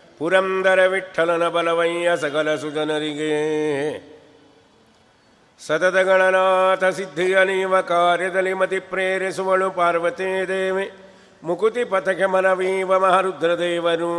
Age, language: 50-69, Kannada